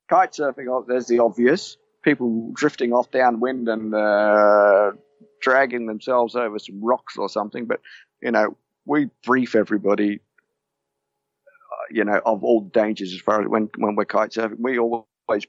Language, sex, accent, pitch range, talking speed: English, male, British, 105-125 Hz, 155 wpm